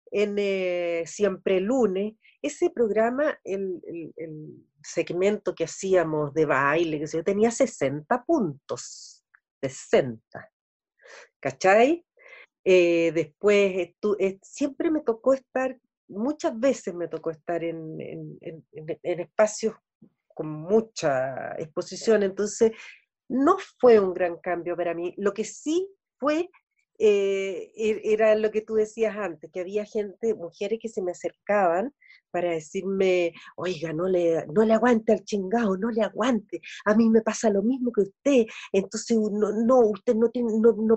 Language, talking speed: Spanish, 140 wpm